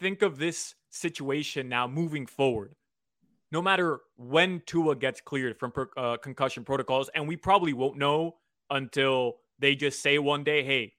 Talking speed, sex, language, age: 160 wpm, male, English, 20-39